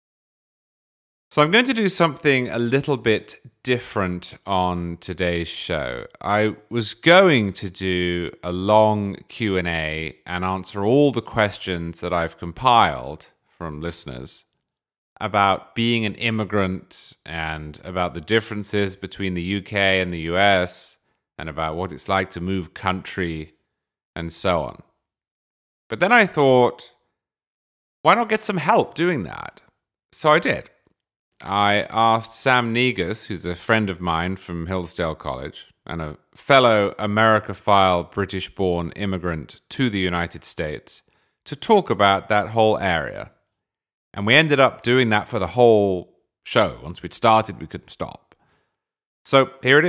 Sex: male